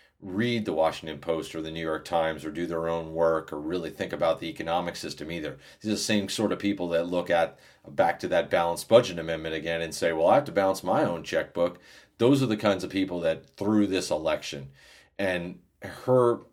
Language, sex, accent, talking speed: English, male, American, 220 wpm